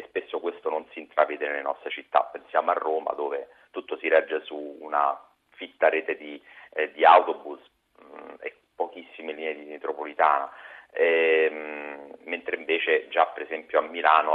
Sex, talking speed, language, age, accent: male, 145 wpm, Italian, 40-59, native